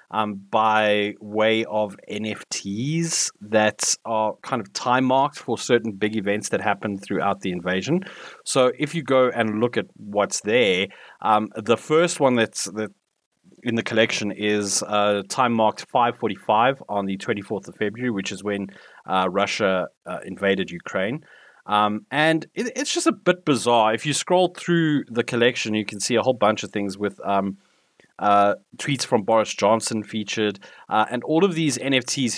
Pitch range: 100-125 Hz